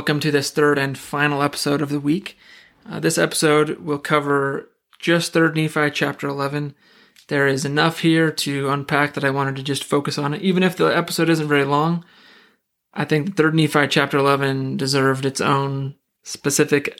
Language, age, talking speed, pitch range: English, 20-39, 180 wpm, 135-155 Hz